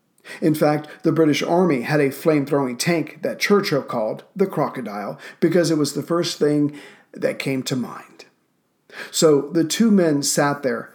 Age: 50-69